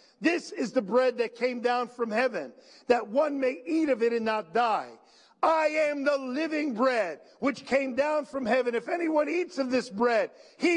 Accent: American